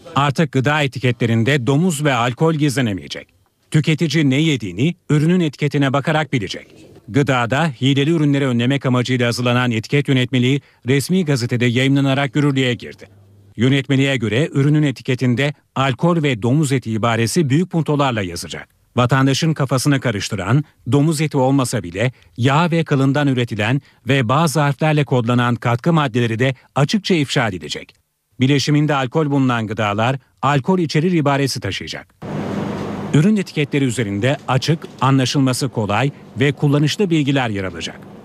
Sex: male